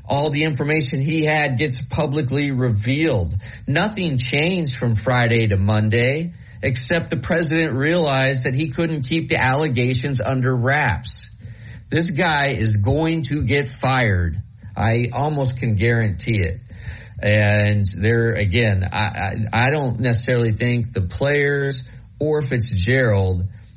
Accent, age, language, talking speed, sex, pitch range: American, 40-59, English, 130 wpm, male, 105-130 Hz